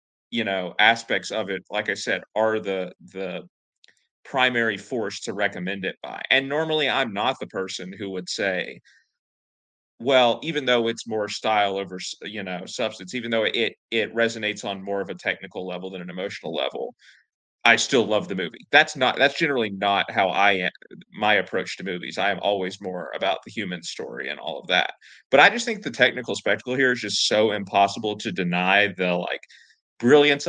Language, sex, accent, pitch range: English, male, American, 100-130 Hz